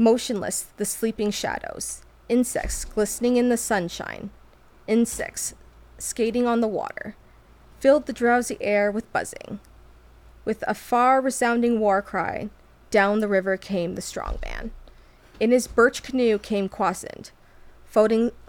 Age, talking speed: 20-39, 125 wpm